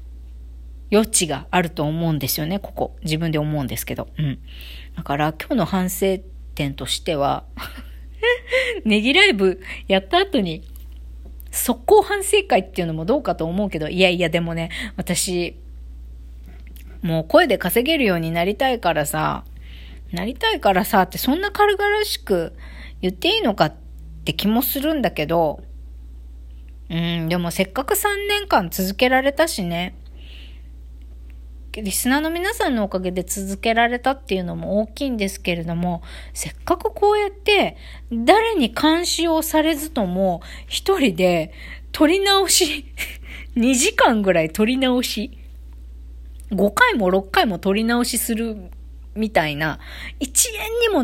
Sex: female